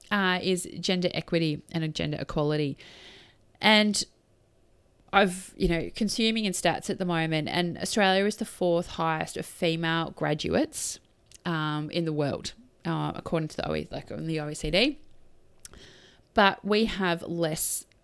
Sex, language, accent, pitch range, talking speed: female, English, Australian, 165-195 Hz, 135 wpm